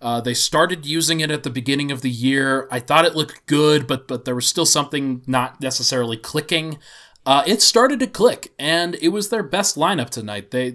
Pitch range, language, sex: 130-165 Hz, English, male